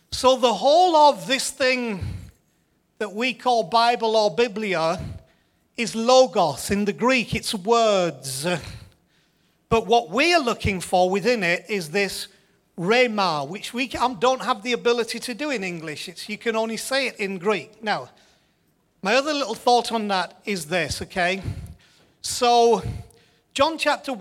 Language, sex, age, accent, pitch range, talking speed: English, male, 40-59, British, 190-245 Hz, 150 wpm